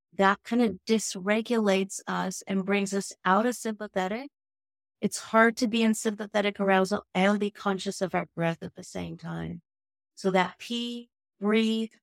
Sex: female